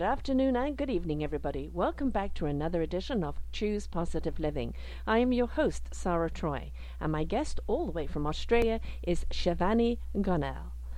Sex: female